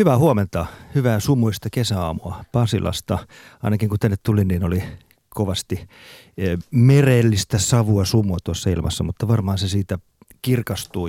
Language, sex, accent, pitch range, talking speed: Finnish, male, native, 95-115 Hz, 125 wpm